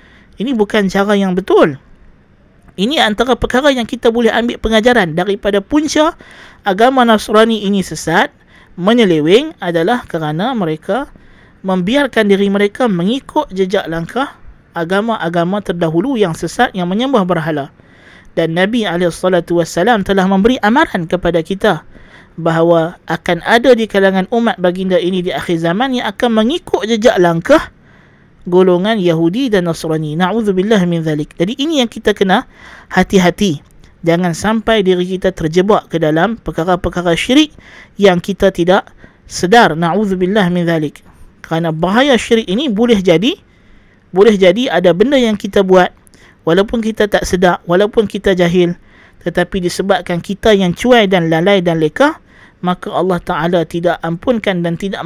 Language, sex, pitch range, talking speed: Malay, male, 170-225 Hz, 135 wpm